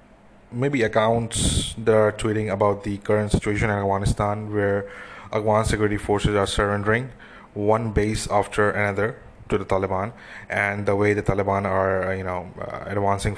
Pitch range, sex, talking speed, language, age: 100-115 Hz, male, 150 wpm, English, 20-39